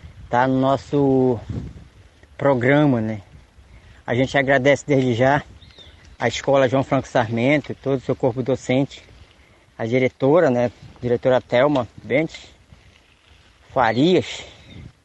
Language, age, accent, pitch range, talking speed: Portuguese, 20-39, Brazilian, 110-145 Hz, 110 wpm